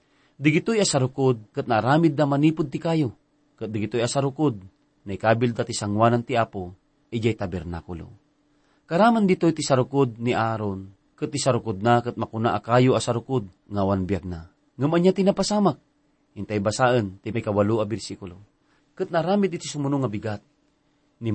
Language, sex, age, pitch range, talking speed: English, male, 40-59, 105-145 Hz, 140 wpm